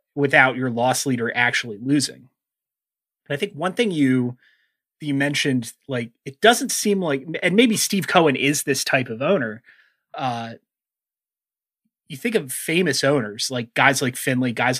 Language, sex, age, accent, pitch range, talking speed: English, male, 30-49, American, 125-160 Hz, 160 wpm